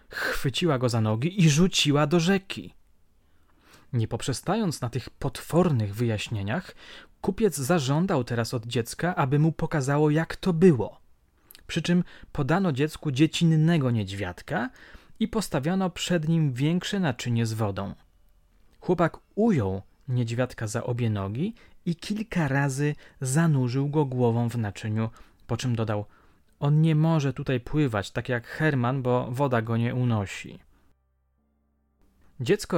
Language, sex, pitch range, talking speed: Polish, male, 110-155 Hz, 130 wpm